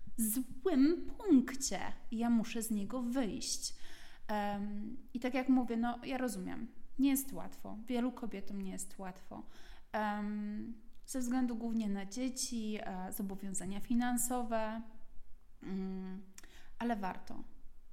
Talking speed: 105 wpm